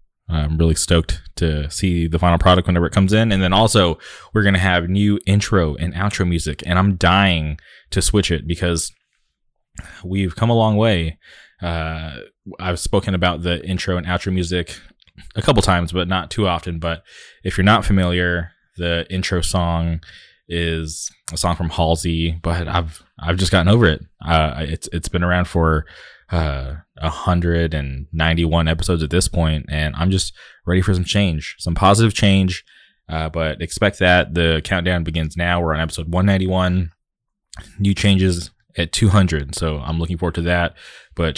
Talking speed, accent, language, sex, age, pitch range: 170 wpm, American, English, male, 20-39, 80-95 Hz